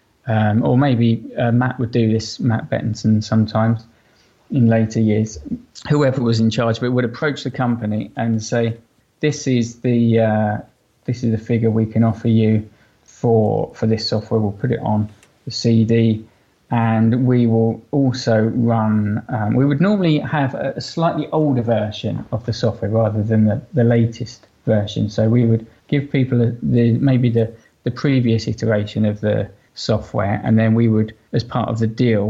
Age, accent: 20-39, British